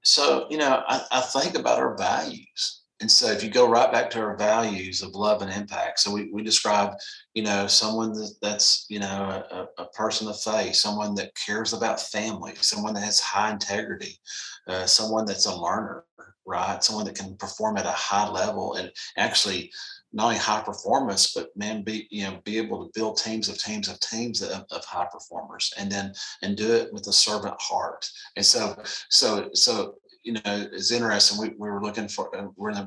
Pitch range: 100-115 Hz